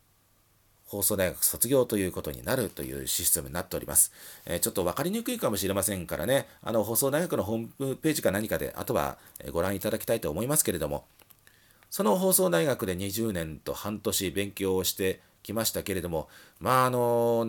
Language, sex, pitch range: Japanese, male, 95-140 Hz